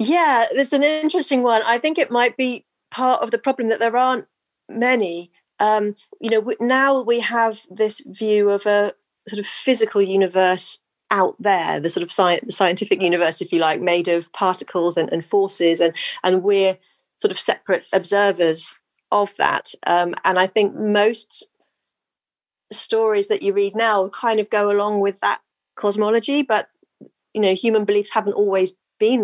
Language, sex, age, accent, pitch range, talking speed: English, female, 40-59, British, 175-230 Hz, 175 wpm